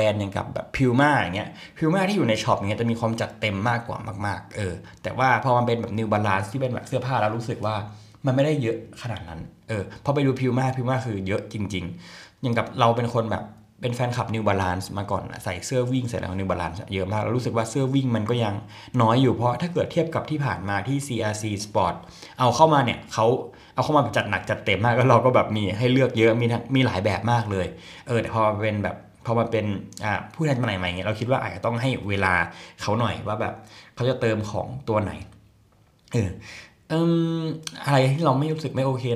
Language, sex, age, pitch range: Thai, male, 20-39, 105-130 Hz